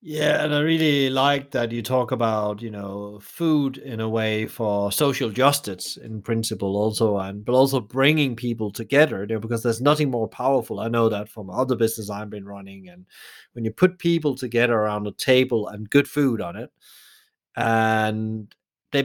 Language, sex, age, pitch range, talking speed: English, male, 30-49, 105-130 Hz, 185 wpm